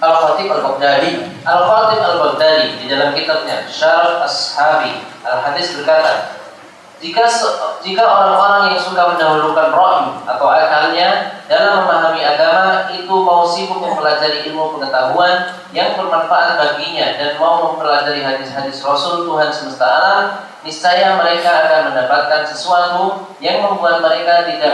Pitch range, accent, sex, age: 145-180 Hz, native, male, 20-39